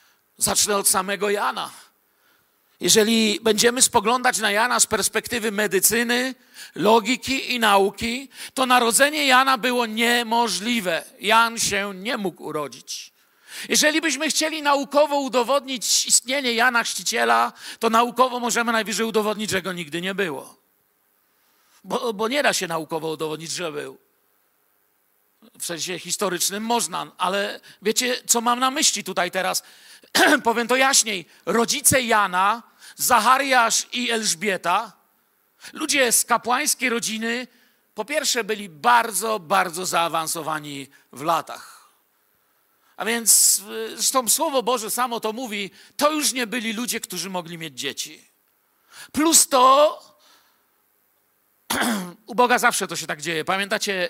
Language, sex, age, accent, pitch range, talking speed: Polish, male, 50-69, native, 195-250 Hz, 125 wpm